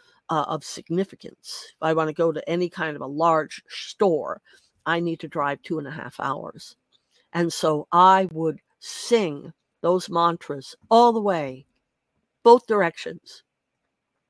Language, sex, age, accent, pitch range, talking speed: English, female, 60-79, American, 165-235 Hz, 150 wpm